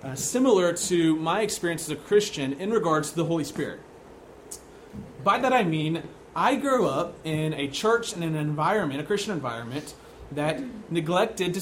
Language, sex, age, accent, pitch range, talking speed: English, male, 30-49, American, 150-195 Hz, 170 wpm